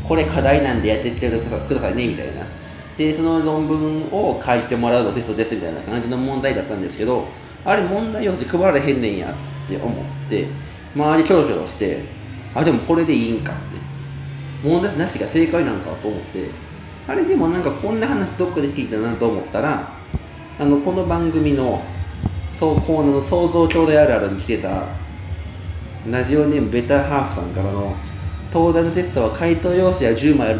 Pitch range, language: 95-145 Hz, Japanese